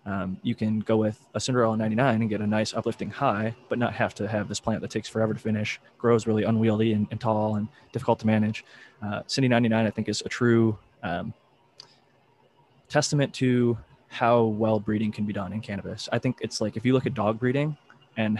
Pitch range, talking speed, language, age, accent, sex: 105-120 Hz, 215 wpm, English, 20-39, American, male